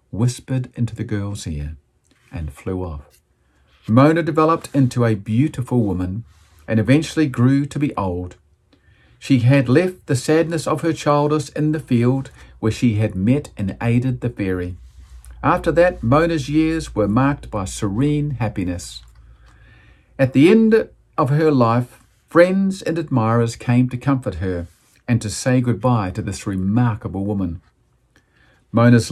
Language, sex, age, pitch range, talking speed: English, male, 50-69, 95-135 Hz, 145 wpm